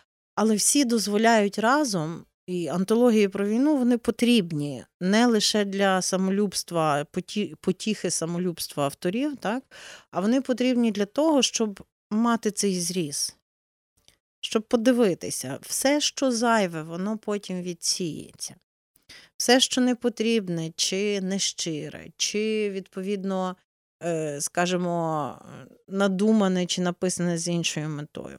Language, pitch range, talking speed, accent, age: Ukrainian, 165-220 Hz, 110 wpm, native, 30-49